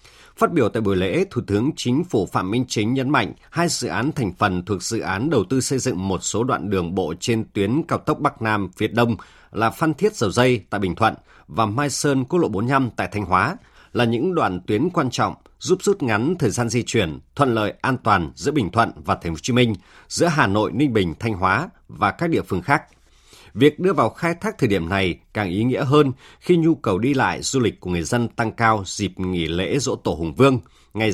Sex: male